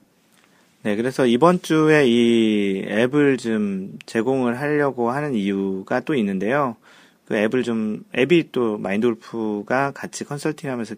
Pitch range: 100-130 Hz